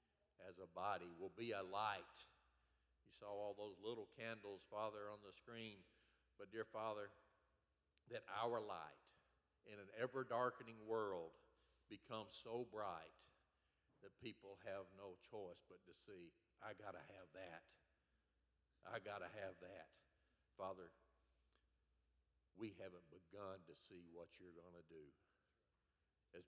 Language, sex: English, male